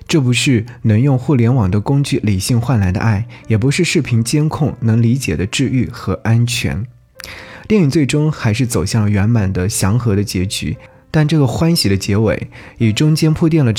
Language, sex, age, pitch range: Chinese, male, 20-39, 105-140 Hz